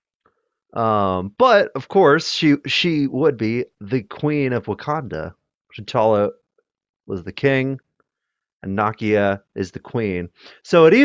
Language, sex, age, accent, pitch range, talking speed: English, male, 30-49, American, 100-135 Hz, 125 wpm